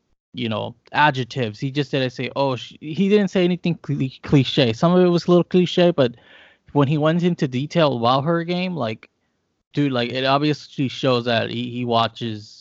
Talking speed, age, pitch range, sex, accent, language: 195 wpm, 20-39, 115-140 Hz, male, American, English